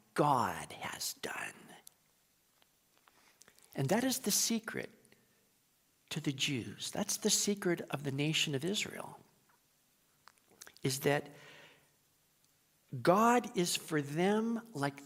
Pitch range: 145-205 Hz